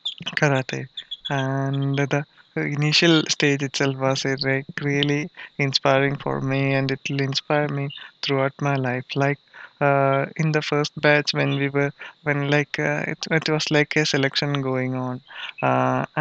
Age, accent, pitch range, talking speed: 20-39, Indian, 140-150 Hz, 155 wpm